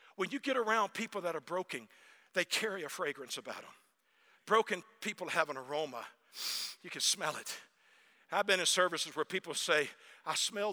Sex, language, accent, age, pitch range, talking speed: male, English, American, 50-69, 185-255 Hz, 180 wpm